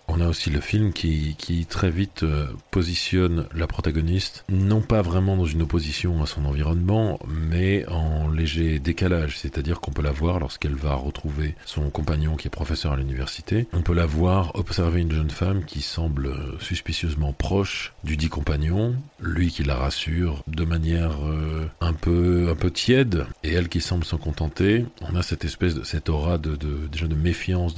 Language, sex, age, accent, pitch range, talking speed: French, male, 40-59, French, 75-90 Hz, 180 wpm